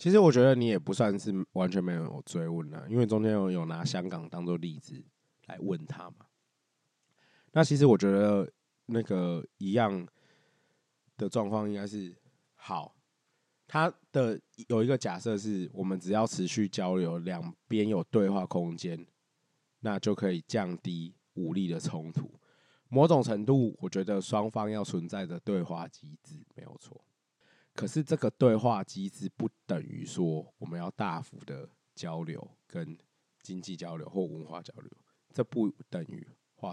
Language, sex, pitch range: Chinese, male, 95-140 Hz